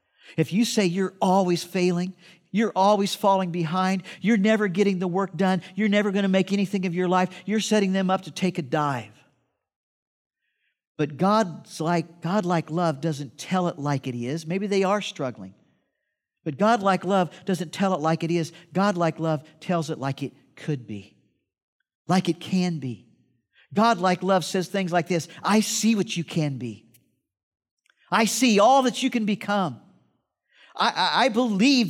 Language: English